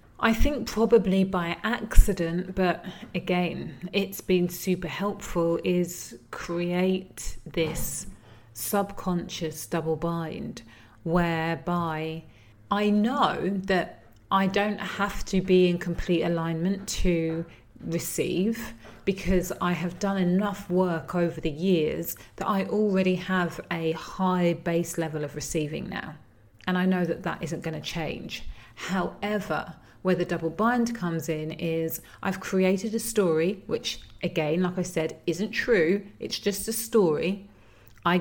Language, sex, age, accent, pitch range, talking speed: English, female, 30-49, British, 160-190 Hz, 130 wpm